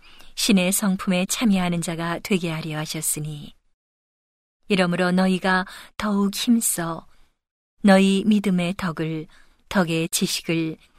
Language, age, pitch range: Korean, 40-59, 170-200 Hz